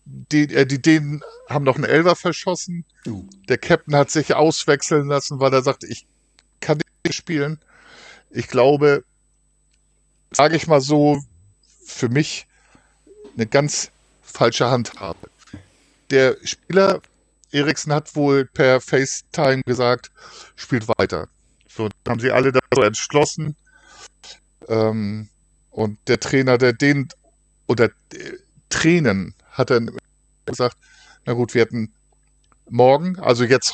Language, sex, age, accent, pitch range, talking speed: German, male, 50-69, German, 120-150 Hz, 125 wpm